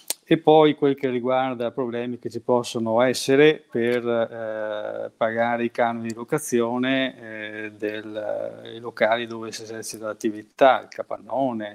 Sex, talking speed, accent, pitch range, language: male, 135 wpm, native, 115-135 Hz, Italian